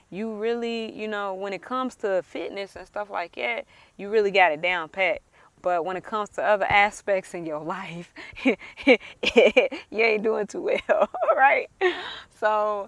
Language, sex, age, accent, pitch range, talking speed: English, female, 20-39, American, 170-200 Hz, 170 wpm